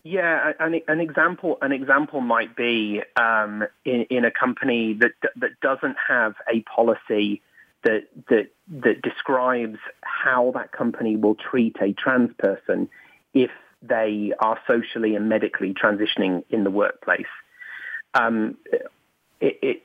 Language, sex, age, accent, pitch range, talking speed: English, male, 30-49, British, 110-140 Hz, 125 wpm